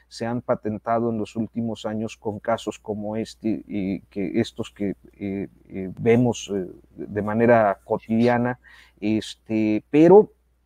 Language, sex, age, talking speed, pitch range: Spanish, male, 40-59, 125 wpm, 110-140 Hz